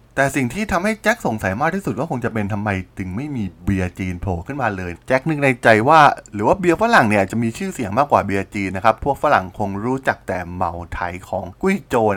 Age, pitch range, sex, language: 20-39, 105-150 Hz, male, Thai